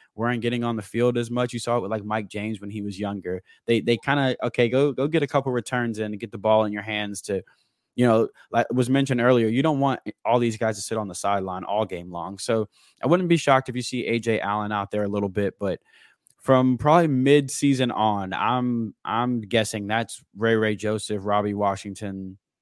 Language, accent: English, American